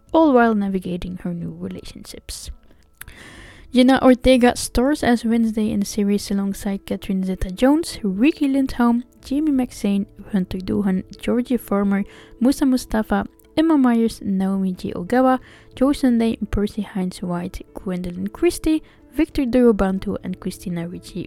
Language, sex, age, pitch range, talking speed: English, female, 10-29, 195-250 Hz, 120 wpm